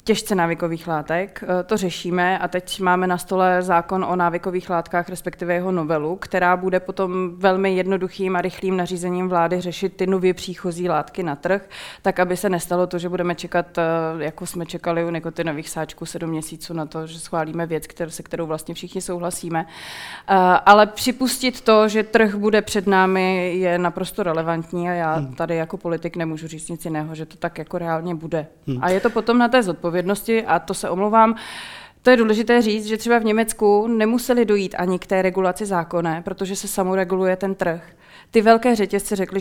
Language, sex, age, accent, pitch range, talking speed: Czech, female, 20-39, native, 170-195 Hz, 185 wpm